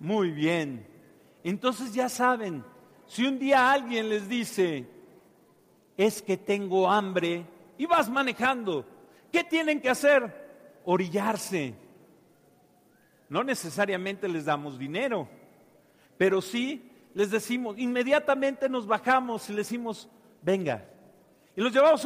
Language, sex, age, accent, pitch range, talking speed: Spanish, male, 50-69, Mexican, 190-265 Hz, 115 wpm